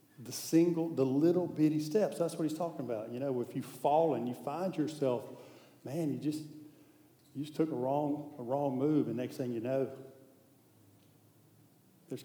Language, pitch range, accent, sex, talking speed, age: English, 120-150 Hz, American, male, 180 wpm, 50-69